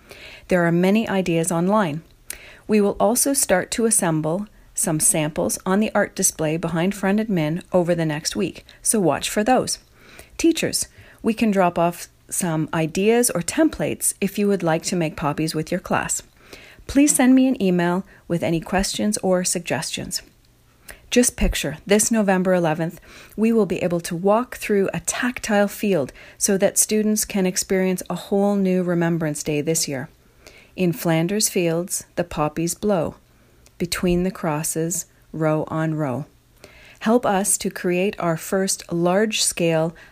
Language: English